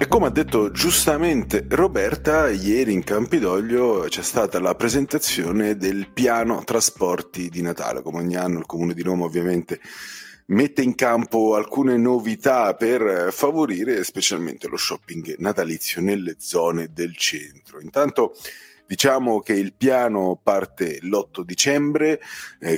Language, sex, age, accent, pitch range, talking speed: Italian, male, 40-59, native, 90-130 Hz, 130 wpm